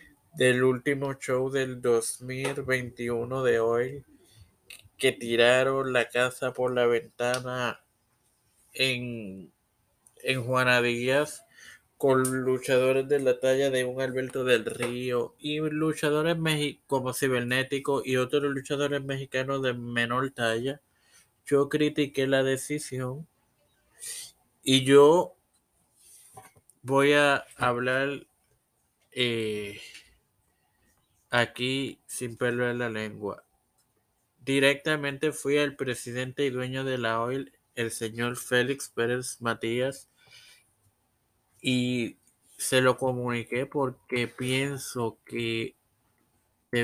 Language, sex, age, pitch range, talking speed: Spanish, male, 20-39, 120-140 Hz, 95 wpm